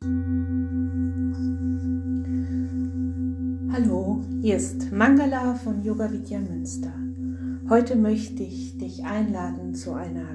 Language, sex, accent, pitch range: German, female, German, 170-225 Hz